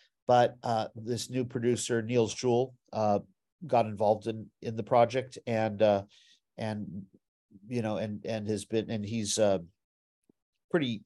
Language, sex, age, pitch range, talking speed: English, male, 50-69, 105-125 Hz, 150 wpm